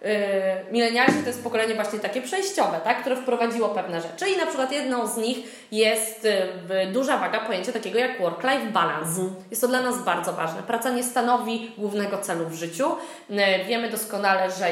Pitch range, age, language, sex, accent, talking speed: 185-245 Hz, 20-39, Polish, female, native, 170 wpm